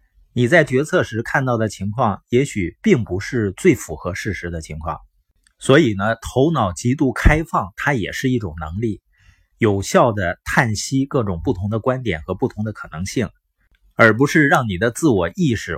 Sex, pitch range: male, 95-130 Hz